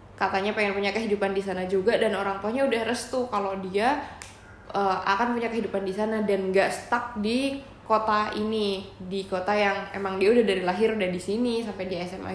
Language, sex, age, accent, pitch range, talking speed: Indonesian, female, 20-39, native, 190-220 Hz, 195 wpm